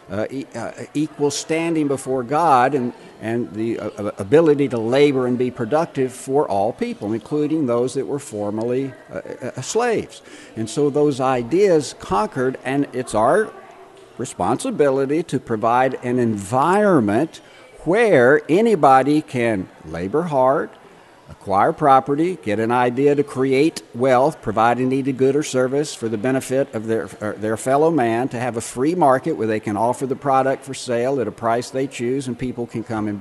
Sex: male